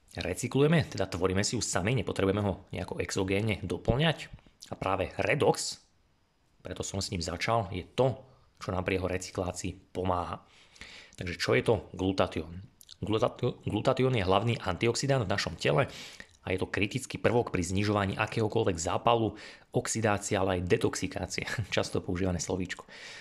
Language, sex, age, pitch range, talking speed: Slovak, male, 30-49, 95-115 Hz, 140 wpm